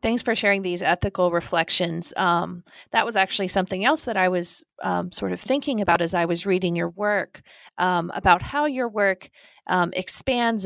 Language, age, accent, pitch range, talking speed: English, 30-49, American, 175-210 Hz, 185 wpm